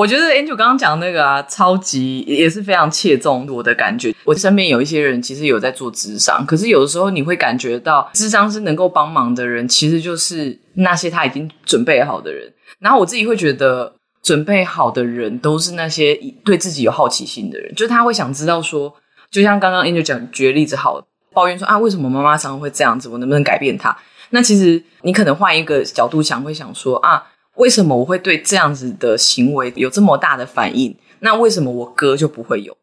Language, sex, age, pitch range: Chinese, female, 20-39, 140-200 Hz